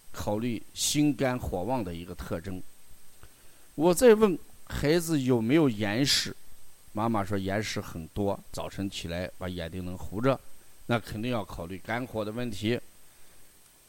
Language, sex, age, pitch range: Chinese, male, 50-69, 95-145 Hz